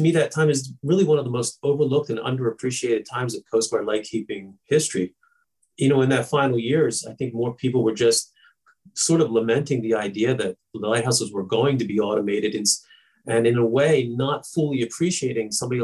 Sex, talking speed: male, 195 wpm